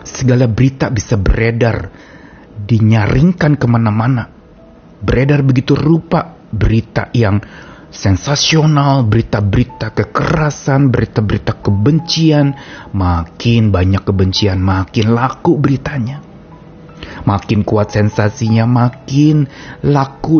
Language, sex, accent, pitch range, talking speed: Indonesian, male, native, 95-140 Hz, 80 wpm